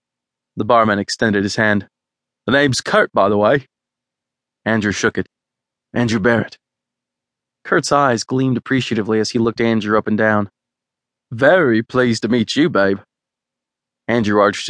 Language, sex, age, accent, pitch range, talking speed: English, male, 20-39, American, 100-125 Hz, 145 wpm